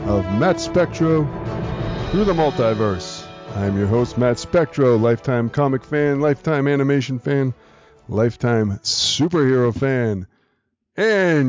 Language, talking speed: English, 110 wpm